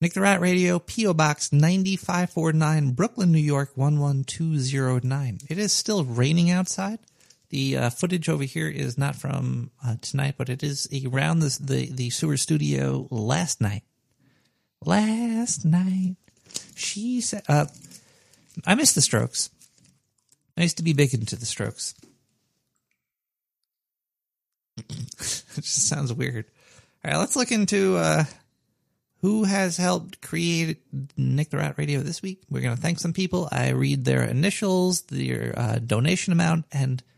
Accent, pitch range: American, 135-175 Hz